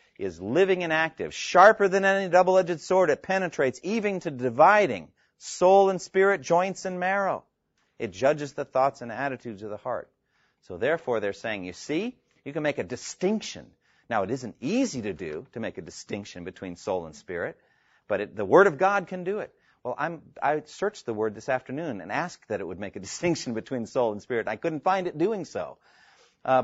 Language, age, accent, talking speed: English, 40-59, American, 200 wpm